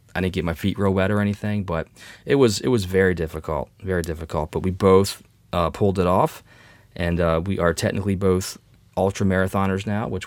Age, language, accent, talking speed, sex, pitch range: 20-39, English, American, 205 wpm, male, 90-110 Hz